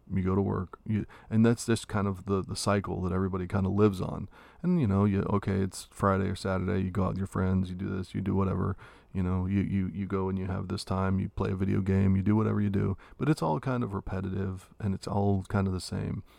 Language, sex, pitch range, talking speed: English, male, 95-105 Hz, 270 wpm